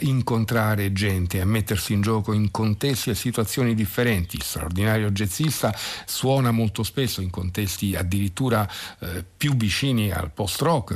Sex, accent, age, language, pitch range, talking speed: male, native, 50-69, Italian, 95-120 Hz, 130 wpm